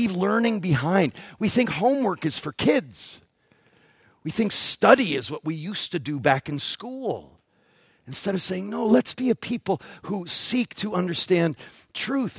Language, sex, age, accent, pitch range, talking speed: English, male, 40-59, American, 170-230 Hz, 160 wpm